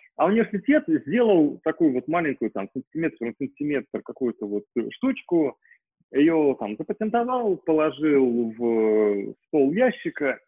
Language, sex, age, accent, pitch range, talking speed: Russian, male, 30-49, native, 130-200 Hz, 115 wpm